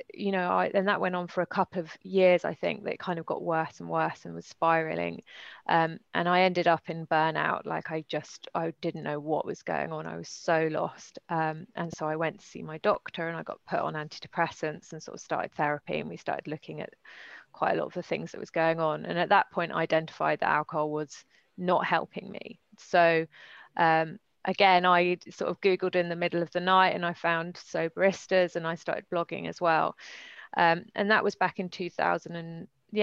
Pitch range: 165-195 Hz